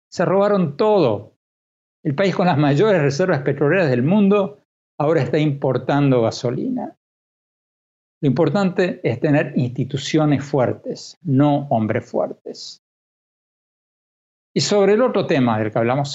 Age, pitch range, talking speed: 60-79, 120-165 Hz, 125 wpm